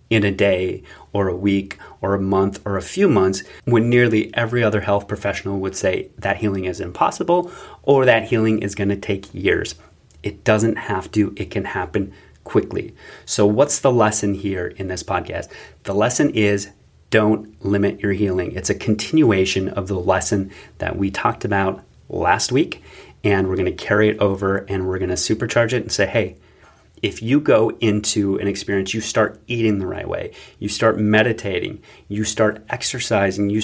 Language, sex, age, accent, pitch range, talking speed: English, male, 30-49, American, 95-110 Hz, 185 wpm